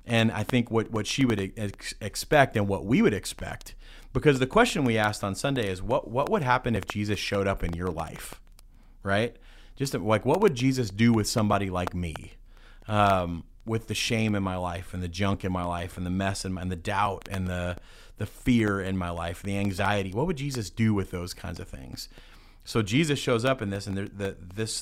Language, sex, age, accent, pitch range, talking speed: English, male, 30-49, American, 95-115 Hz, 225 wpm